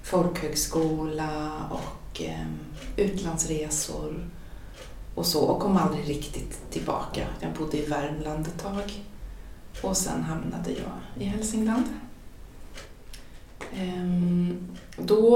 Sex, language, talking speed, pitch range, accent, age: female, Swedish, 100 wpm, 155-205 Hz, native, 30-49